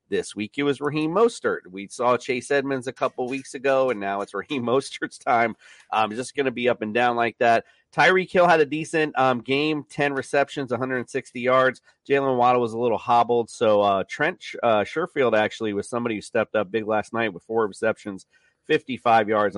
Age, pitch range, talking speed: 40-59, 110-140 Hz, 200 wpm